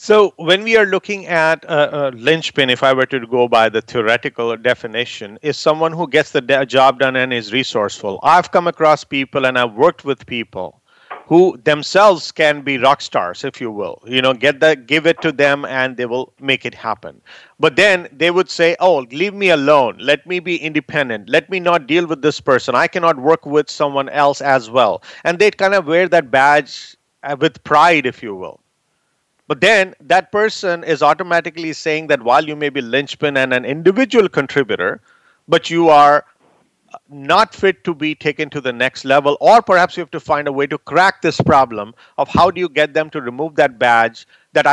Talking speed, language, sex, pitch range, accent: 205 wpm, English, male, 135-180 Hz, Indian